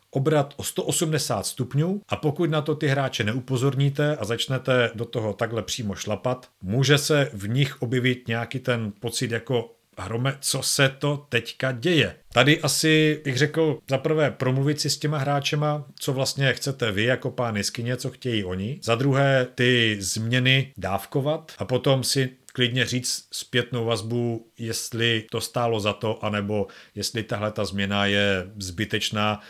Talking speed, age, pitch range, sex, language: 155 wpm, 40-59, 110-140 Hz, male, Czech